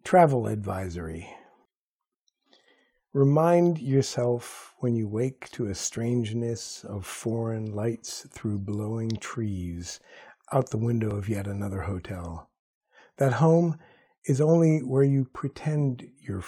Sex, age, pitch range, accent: male, 50-69, 110-145 Hz, American